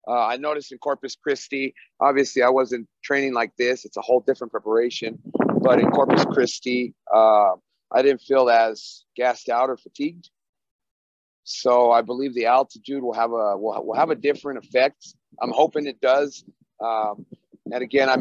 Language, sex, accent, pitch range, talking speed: English, male, American, 120-140 Hz, 170 wpm